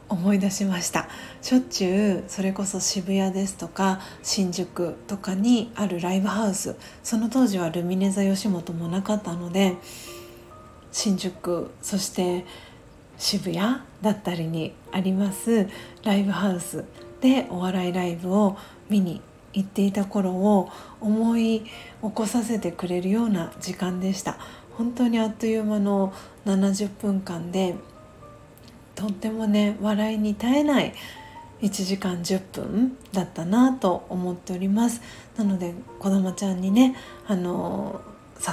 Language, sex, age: Japanese, female, 40-59